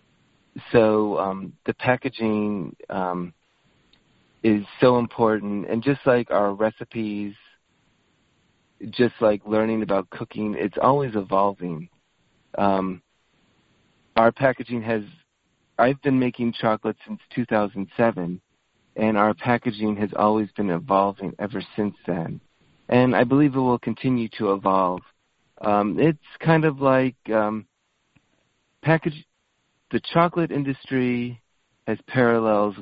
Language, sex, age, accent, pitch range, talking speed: English, male, 30-49, American, 100-125 Hz, 110 wpm